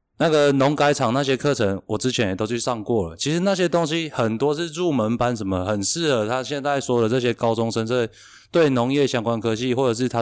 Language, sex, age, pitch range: Chinese, male, 20-39, 110-150 Hz